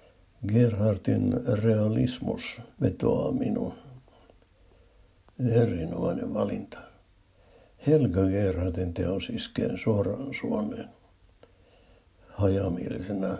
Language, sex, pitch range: Finnish, male, 95-115 Hz